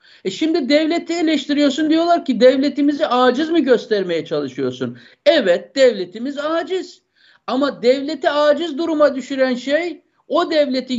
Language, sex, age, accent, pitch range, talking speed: Turkish, male, 60-79, native, 240-330 Hz, 120 wpm